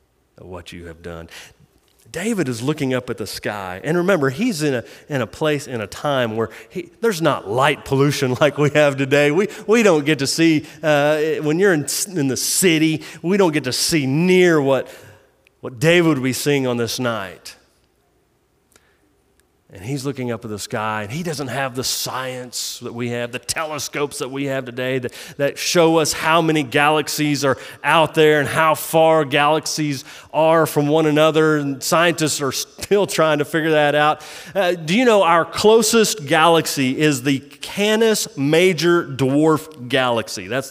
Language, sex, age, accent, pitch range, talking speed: English, male, 30-49, American, 130-165 Hz, 180 wpm